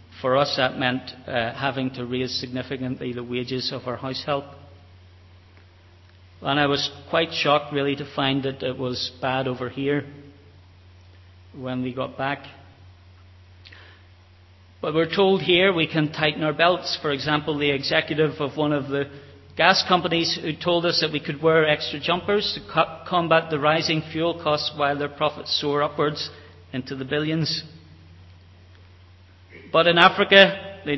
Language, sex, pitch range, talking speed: English, male, 95-150 Hz, 155 wpm